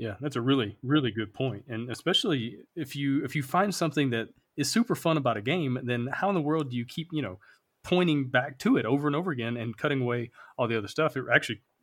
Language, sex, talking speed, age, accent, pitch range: English, male, 250 wpm, 30-49, American, 120-160 Hz